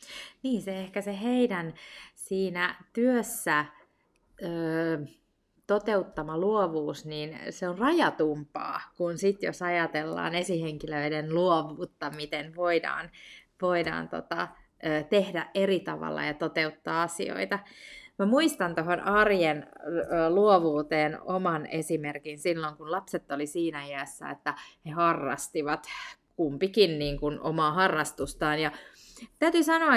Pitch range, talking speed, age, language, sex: 155-230 Hz, 100 wpm, 30-49, Finnish, female